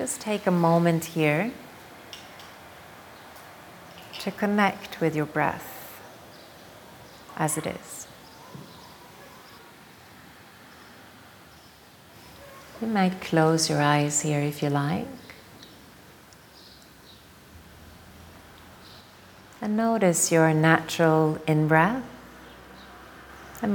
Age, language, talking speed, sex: 40-59, English, 70 wpm, female